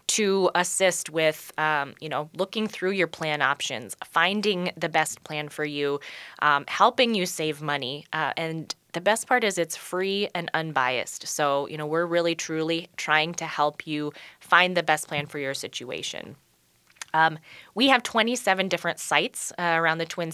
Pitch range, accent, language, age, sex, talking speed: 155-190 Hz, American, English, 20-39, female, 175 wpm